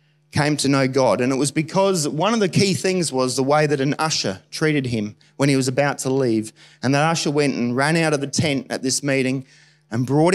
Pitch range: 140-165 Hz